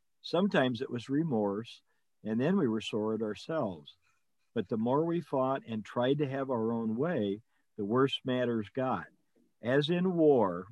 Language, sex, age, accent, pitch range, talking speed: English, male, 50-69, American, 110-140 Hz, 170 wpm